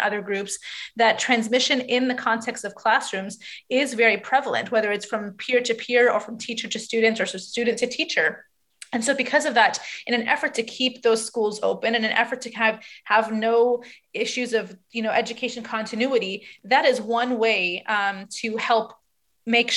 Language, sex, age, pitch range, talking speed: English, female, 30-49, 215-245 Hz, 185 wpm